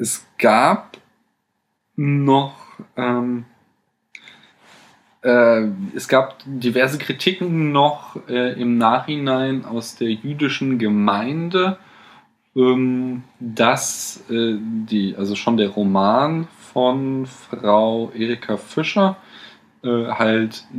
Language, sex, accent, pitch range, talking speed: German, male, German, 105-125 Hz, 85 wpm